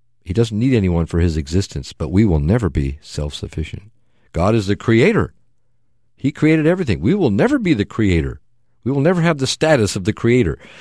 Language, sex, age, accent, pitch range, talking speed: English, male, 50-69, American, 90-120 Hz, 195 wpm